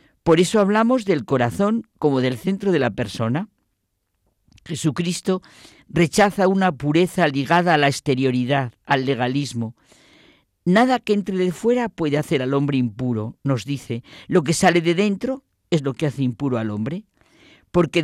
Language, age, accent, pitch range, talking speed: Spanish, 50-69, Spanish, 130-185 Hz, 155 wpm